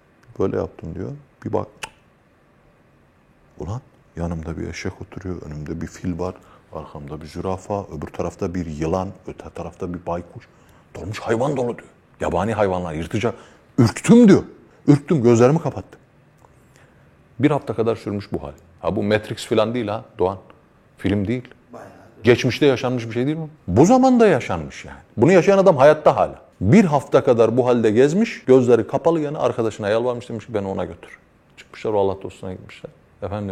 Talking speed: 160 wpm